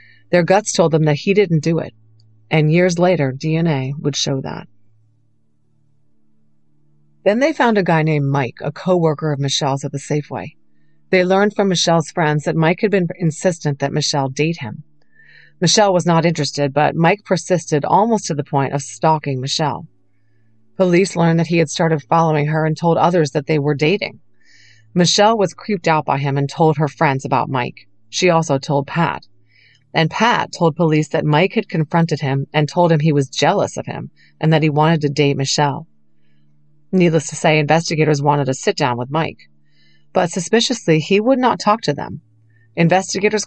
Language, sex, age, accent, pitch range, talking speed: English, female, 40-59, American, 135-170 Hz, 180 wpm